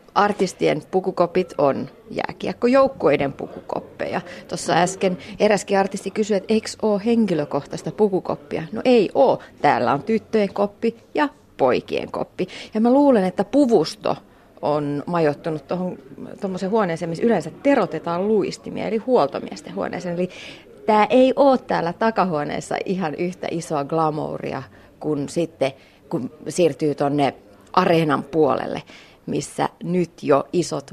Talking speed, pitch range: 120 wpm, 160-220 Hz